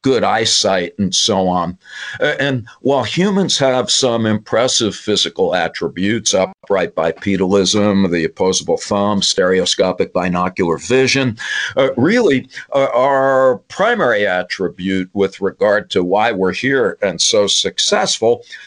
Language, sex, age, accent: English, male, 50-69, American